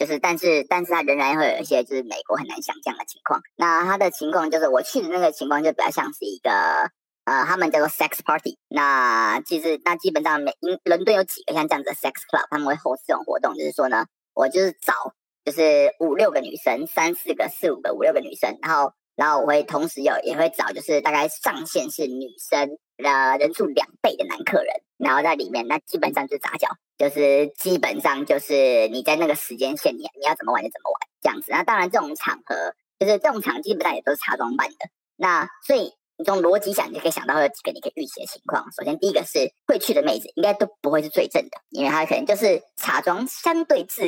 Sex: male